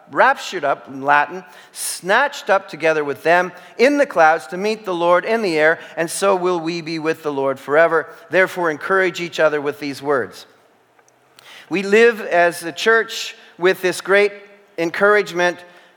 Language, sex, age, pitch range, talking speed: English, male, 40-59, 140-180 Hz, 165 wpm